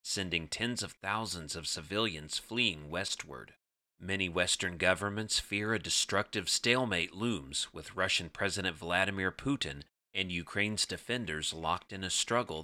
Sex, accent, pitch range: male, American, 85-110 Hz